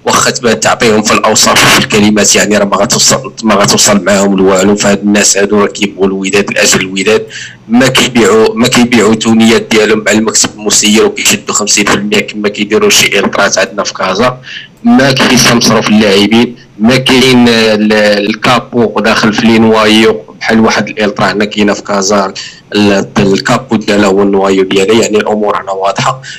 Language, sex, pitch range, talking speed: Arabic, male, 105-125 Hz, 150 wpm